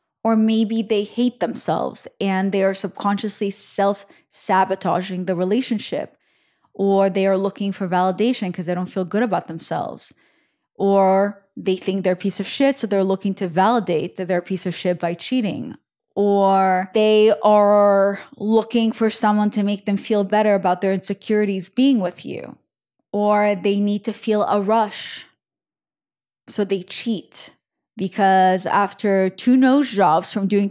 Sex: female